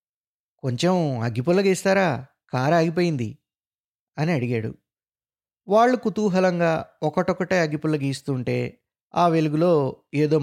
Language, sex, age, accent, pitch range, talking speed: Telugu, male, 20-39, native, 120-160 Hz, 85 wpm